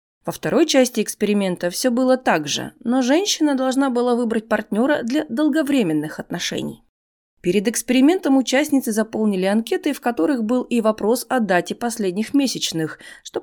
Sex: female